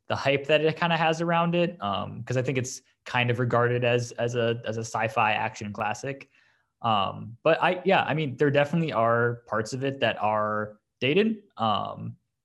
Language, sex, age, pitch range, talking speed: English, male, 20-39, 105-130 Hz, 195 wpm